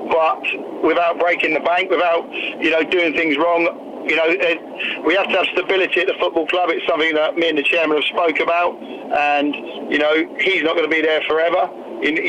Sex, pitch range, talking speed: male, 155-180 Hz, 210 wpm